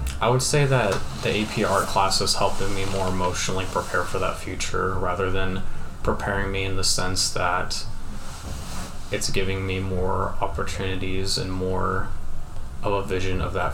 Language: English